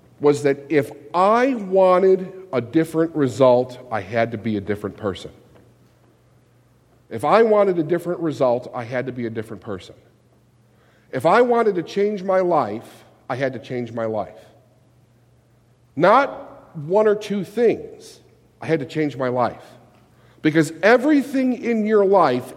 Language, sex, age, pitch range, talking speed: English, male, 50-69, 125-190 Hz, 150 wpm